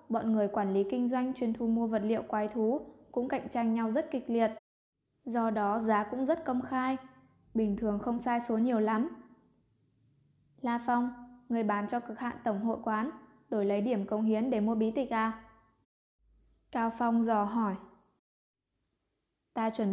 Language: Vietnamese